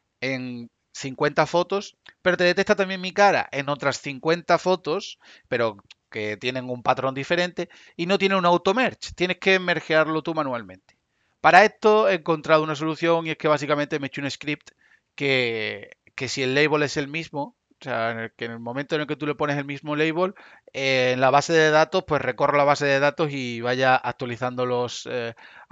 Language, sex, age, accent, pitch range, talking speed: Spanish, male, 30-49, Spanish, 130-165 Hz, 205 wpm